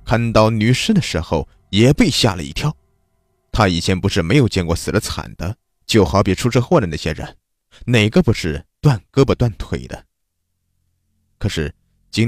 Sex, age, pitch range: male, 20-39, 85-125 Hz